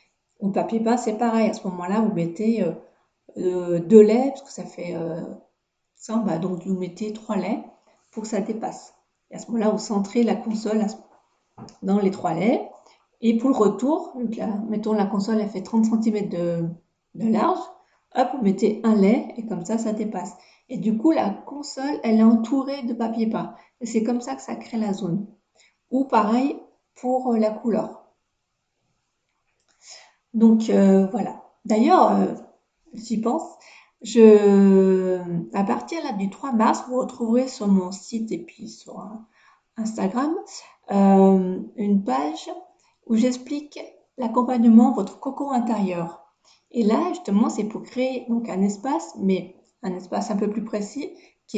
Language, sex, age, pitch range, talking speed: French, female, 40-59, 200-245 Hz, 165 wpm